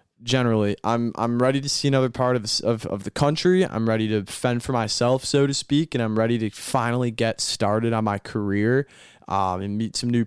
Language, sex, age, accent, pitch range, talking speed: English, male, 20-39, American, 105-125 Hz, 220 wpm